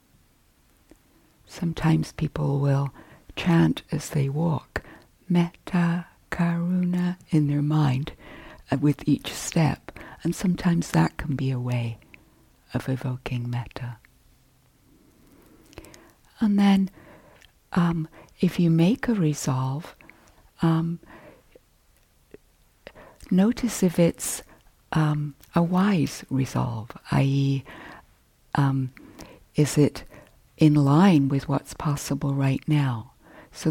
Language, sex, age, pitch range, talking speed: English, female, 60-79, 135-170 Hz, 95 wpm